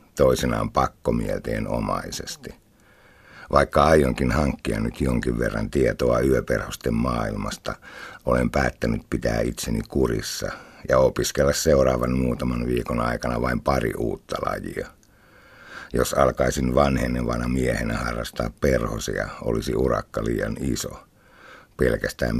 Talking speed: 100 wpm